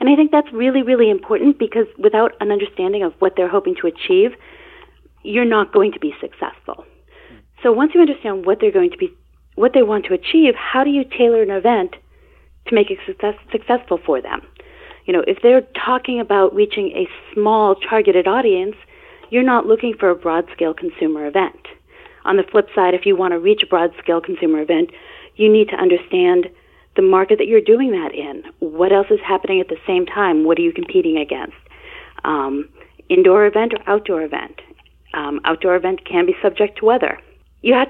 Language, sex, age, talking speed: English, female, 30-49, 195 wpm